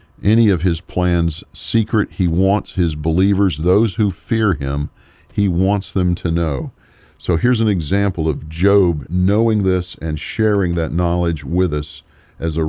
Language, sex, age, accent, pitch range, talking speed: English, male, 50-69, American, 80-105 Hz, 160 wpm